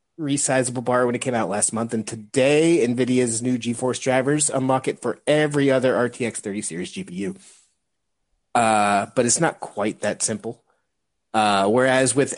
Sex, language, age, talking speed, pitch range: male, English, 30-49, 160 wpm, 115-140 Hz